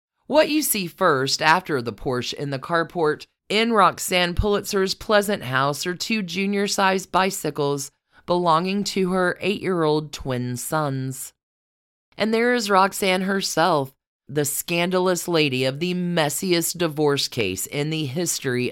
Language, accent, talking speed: English, American, 130 wpm